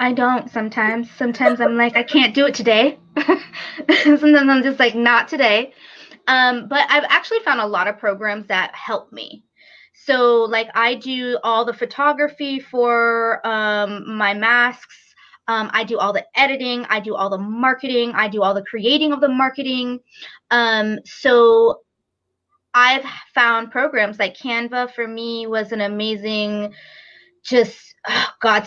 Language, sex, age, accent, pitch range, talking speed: English, female, 20-39, American, 210-250 Hz, 155 wpm